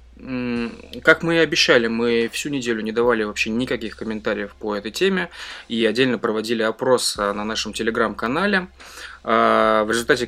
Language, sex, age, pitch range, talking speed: Russian, male, 20-39, 115-130 Hz, 140 wpm